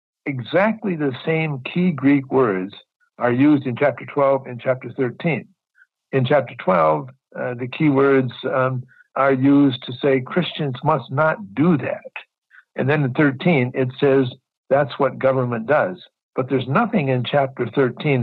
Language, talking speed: English, 155 wpm